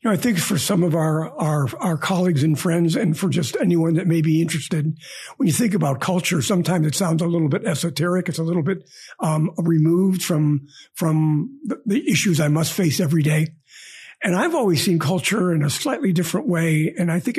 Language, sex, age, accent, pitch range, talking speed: English, male, 50-69, American, 160-190 Hz, 210 wpm